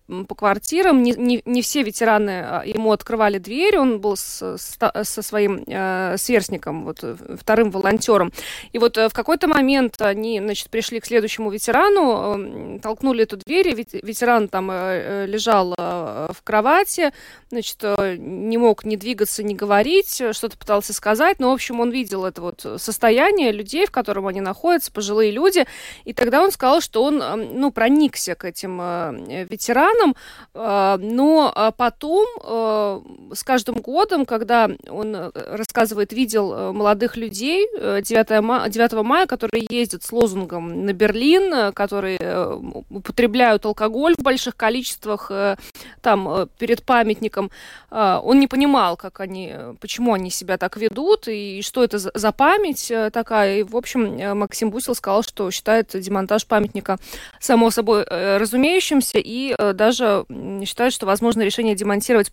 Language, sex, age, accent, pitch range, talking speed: Russian, female, 20-39, native, 205-245 Hz, 140 wpm